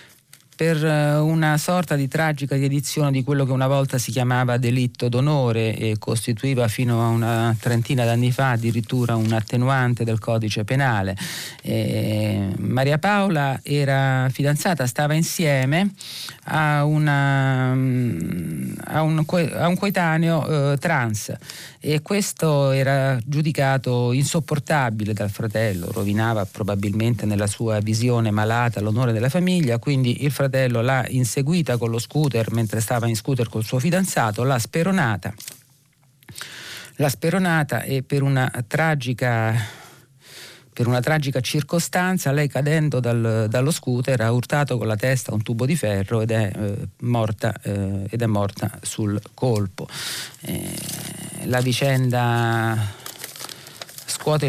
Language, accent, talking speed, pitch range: Italian, native, 125 wpm, 115-150 Hz